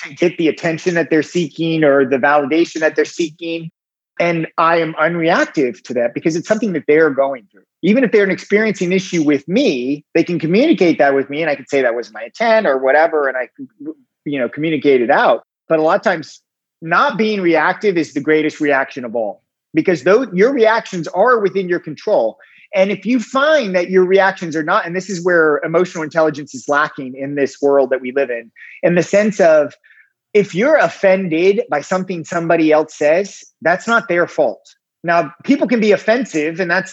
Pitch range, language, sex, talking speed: 150-200 Hz, English, male, 205 wpm